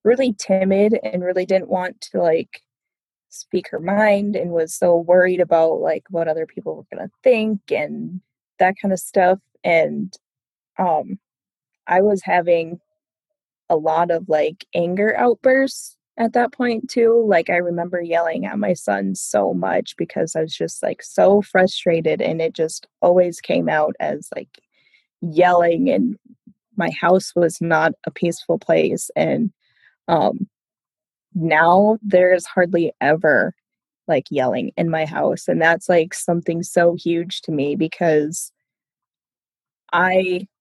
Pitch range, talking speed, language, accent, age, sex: 170-210 Hz, 145 wpm, English, American, 20-39, female